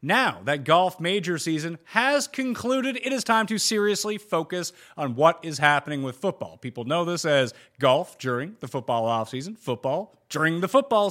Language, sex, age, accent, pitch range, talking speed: English, male, 30-49, American, 140-220 Hz, 175 wpm